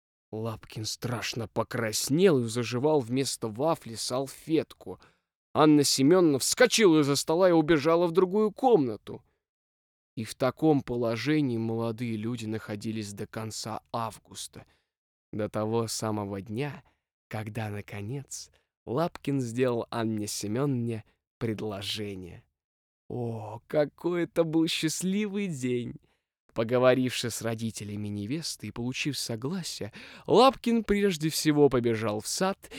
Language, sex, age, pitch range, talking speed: Russian, male, 20-39, 110-160 Hz, 105 wpm